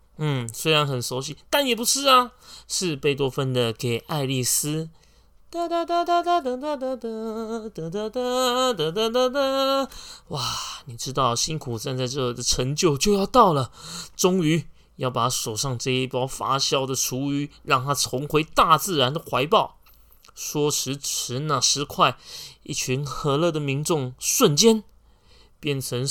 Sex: male